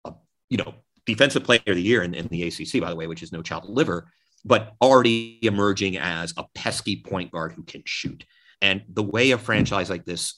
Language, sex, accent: English, male, American